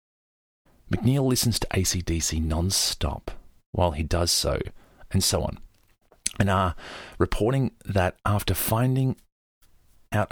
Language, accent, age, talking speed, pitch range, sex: English, Australian, 30-49, 115 wpm, 90-105 Hz, male